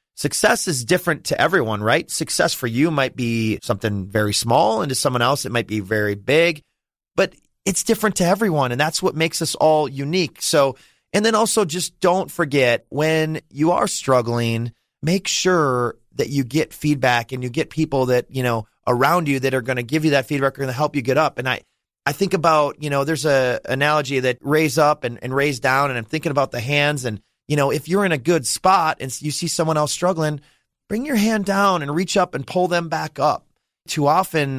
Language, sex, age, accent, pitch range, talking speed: English, male, 30-49, American, 125-160 Hz, 220 wpm